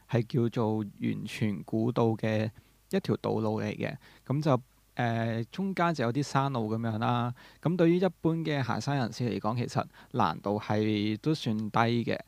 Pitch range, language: 110-140 Hz, Chinese